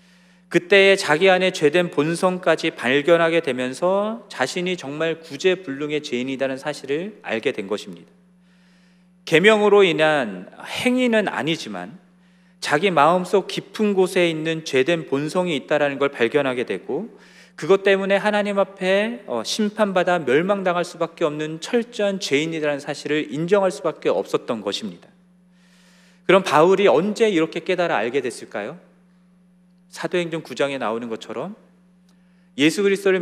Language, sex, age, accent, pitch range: Korean, male, 40-59, native, 165-195 Hz